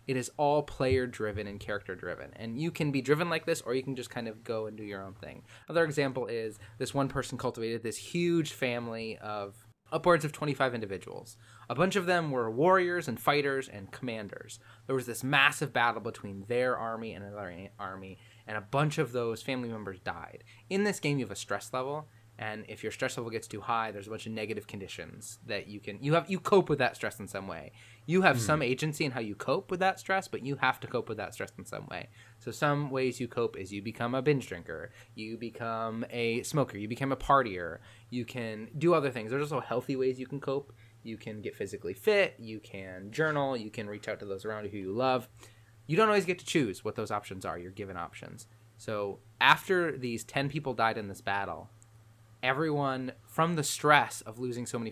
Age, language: 20-39, English